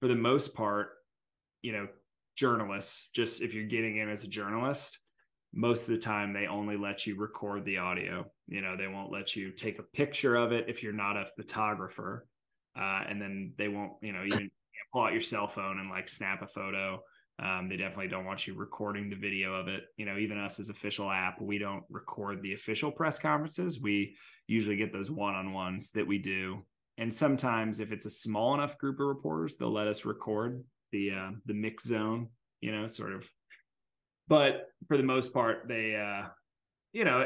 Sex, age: male, 20-39